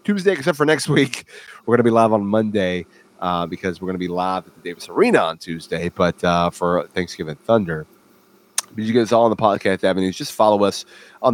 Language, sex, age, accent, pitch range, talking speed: English, male, 30-49, American, 90-110 Hz, 230 wpm